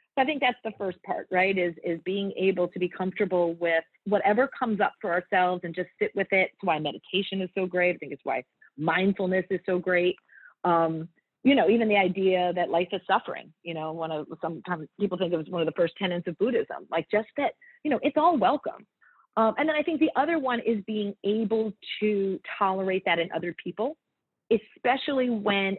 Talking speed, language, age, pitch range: 215 wpm, English, 40-59, 170-225 Hz